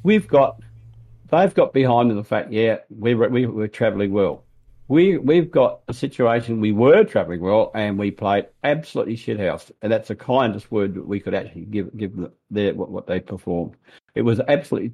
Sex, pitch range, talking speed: male, 105-130 Hz, 200 wpm